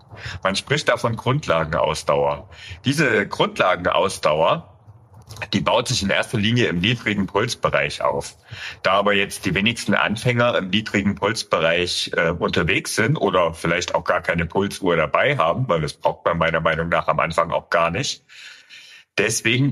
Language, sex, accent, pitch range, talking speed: German, male, German, 85-115 Hz, 150 wpm